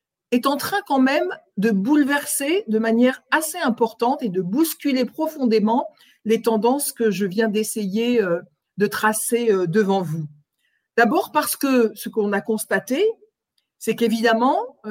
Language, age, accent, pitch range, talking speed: French, 50-69, French, 205-270 Hz, 135 wpm